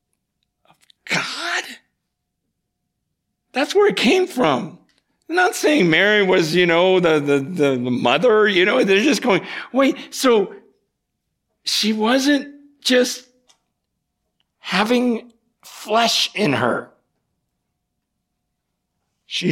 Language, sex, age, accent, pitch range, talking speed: English, male, 60-79, American, 215-295 Hz, 100 wpm